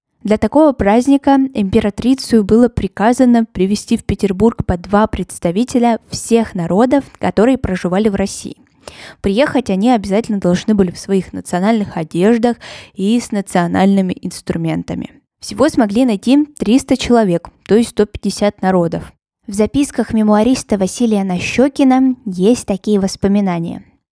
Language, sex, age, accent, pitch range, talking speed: Russian, female, 20-39, native, 185-240 Hz, 120 wpm